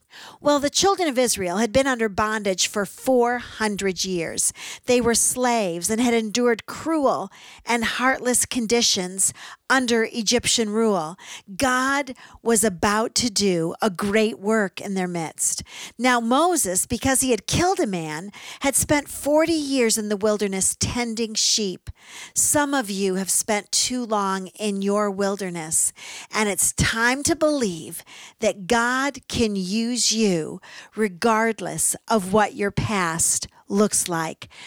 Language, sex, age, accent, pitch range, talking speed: English, female, 50-69, American, 195-245 Hz, 140 wpm